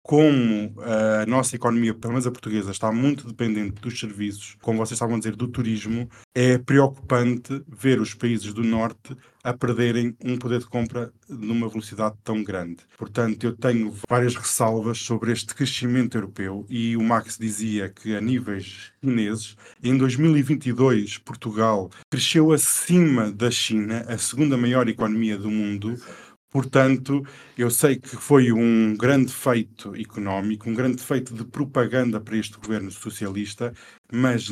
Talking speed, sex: 150 wpm, male